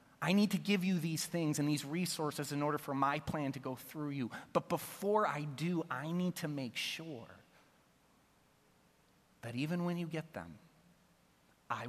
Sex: male